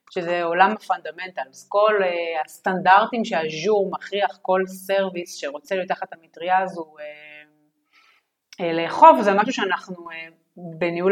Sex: female